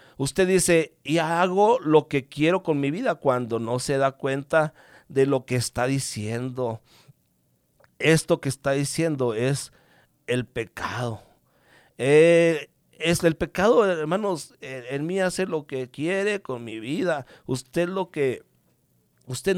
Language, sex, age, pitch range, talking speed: English, male, 50-69, 120-155 Hz, 140 wpm